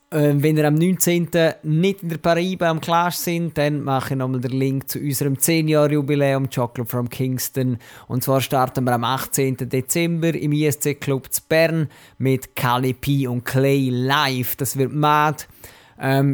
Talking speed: 160 wpm